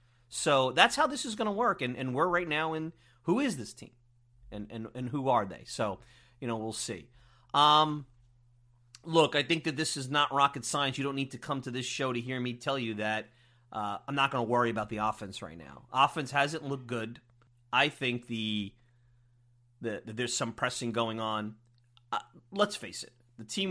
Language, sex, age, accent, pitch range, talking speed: English, male, 30-49, American, 115-135 Hz, 215 wpm